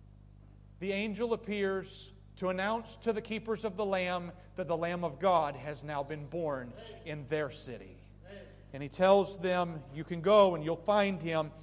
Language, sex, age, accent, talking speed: English, male, 40-59, American, 175 wpm